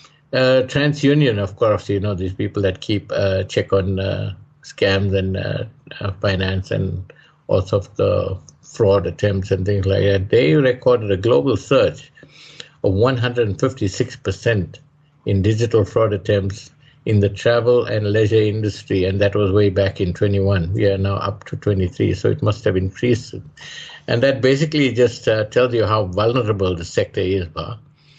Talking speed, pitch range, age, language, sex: 160 wpm, 100-125 Hz, 50-69, English, male